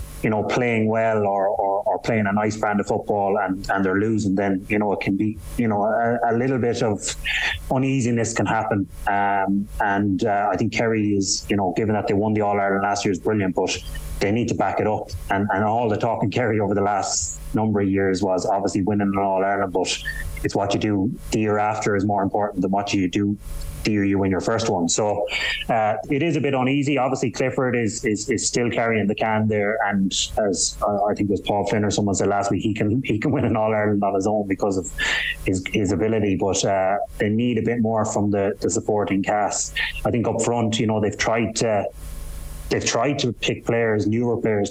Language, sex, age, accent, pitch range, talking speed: English, male, 30-49, Irish, 100-115 Hz, 235 wpm